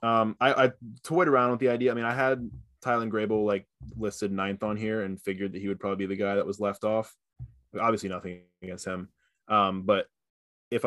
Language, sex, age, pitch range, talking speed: English, male, 20-39, 95-115 Hz, 215 wpm